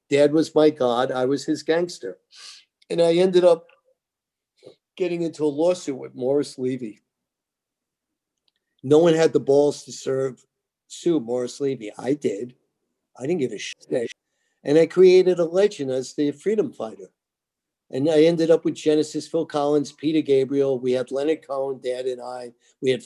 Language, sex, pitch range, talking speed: English, male, 130-160 Hz, 165 wpm